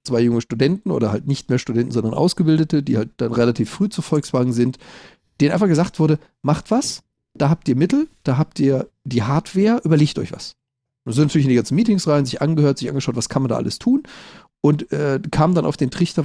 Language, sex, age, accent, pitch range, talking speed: German, male, 40-59, German, 120-170 Hz, 225 wpm